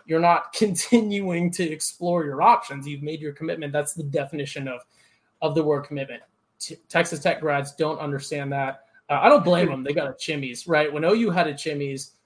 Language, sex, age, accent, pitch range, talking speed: English, male, 20-39, American, 135-160 Hz, 200 wpm